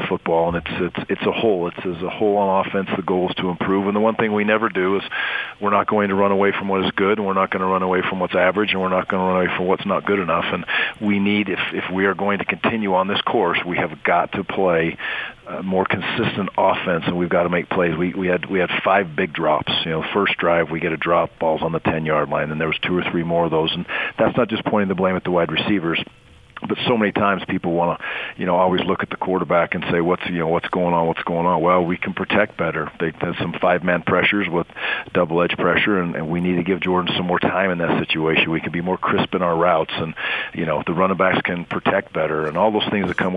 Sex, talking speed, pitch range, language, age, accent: male, 280 wpm, 85-95 Hz, English, 40-59, American